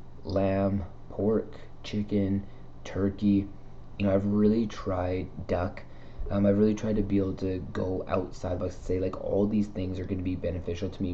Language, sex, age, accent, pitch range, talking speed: English, male, 20-39, American, 90-100 Hz, 180 wpm